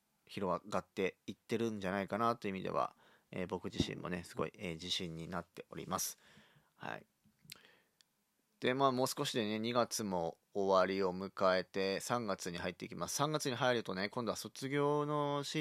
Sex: male